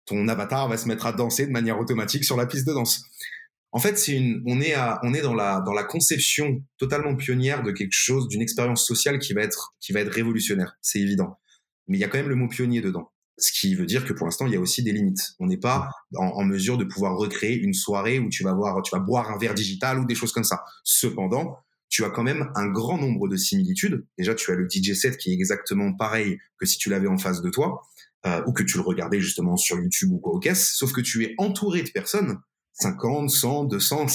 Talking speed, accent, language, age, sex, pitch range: 255 wpm, French, French, 30-49, male, 115-170 Hz